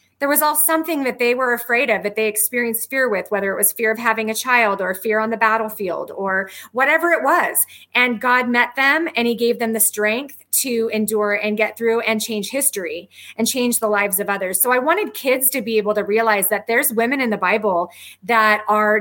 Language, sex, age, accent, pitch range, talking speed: English, female, 30-49, American, 205-260 Hz, 225 wpm